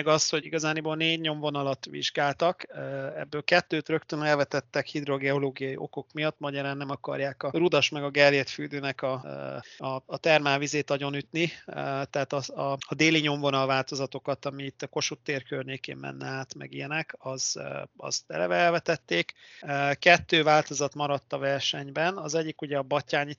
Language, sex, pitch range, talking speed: Hungarian, male, 135-150 Hz, 140 wpm